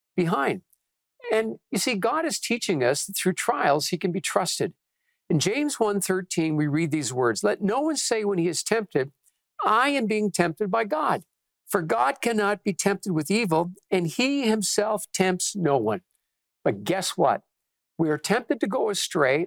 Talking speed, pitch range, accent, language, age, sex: 180 wpm, 175-225 Hz, American, English, 50-69, male